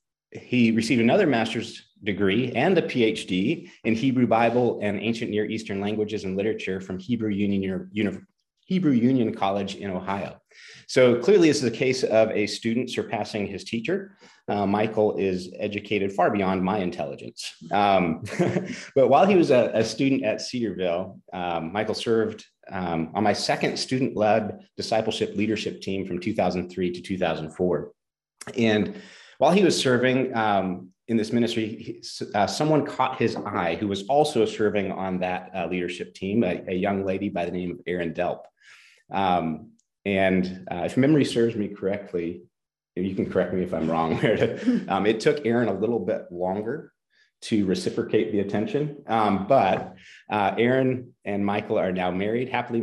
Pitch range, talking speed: 95-115 Hz, 160 wpm